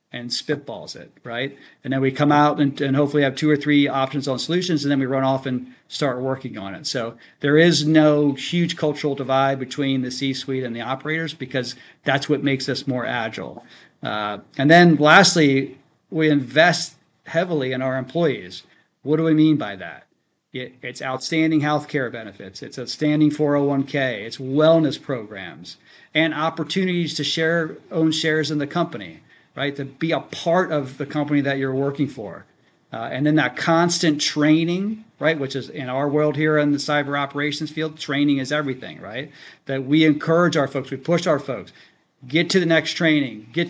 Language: English